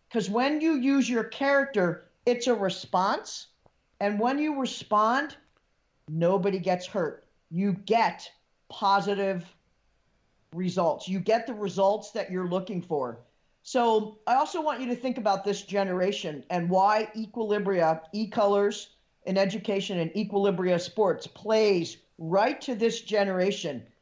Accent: American